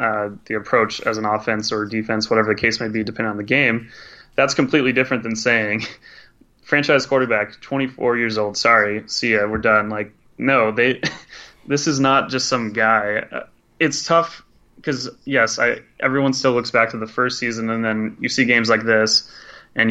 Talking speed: 185 wpm